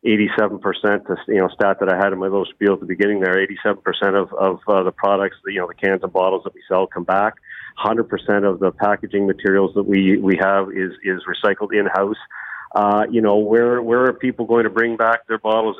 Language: English